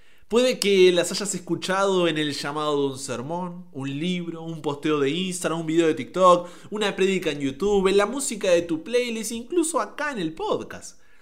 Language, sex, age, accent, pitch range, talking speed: Spanish, male, 30-49, Argentinian, 140-200 Hz, 195 wpm